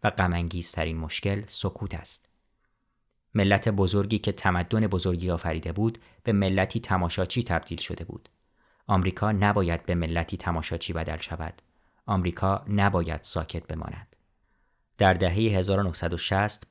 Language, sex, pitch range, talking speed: English, male, 85-100 Hz, 115 wpm